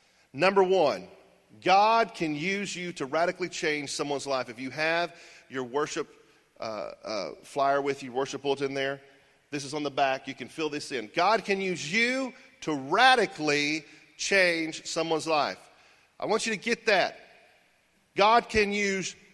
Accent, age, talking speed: American, 40-59, 165 wpm